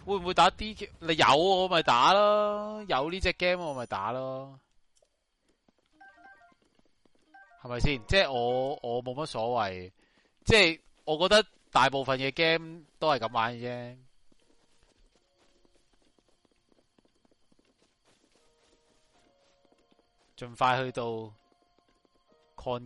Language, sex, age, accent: Chinese, male, 20-39, native